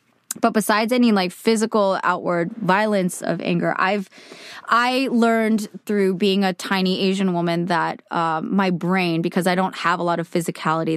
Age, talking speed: 20-39, 160 wpm